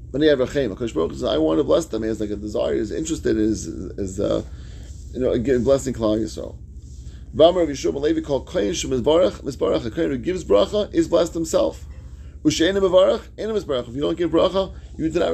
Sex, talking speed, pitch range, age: male, 190 wpm, 105-165 Hz, 30-49